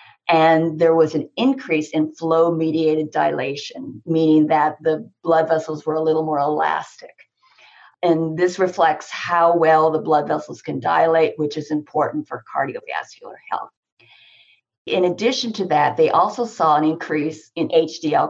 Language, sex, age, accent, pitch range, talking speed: English, female, 50-69, American, 155-180 Hz, 150 wpm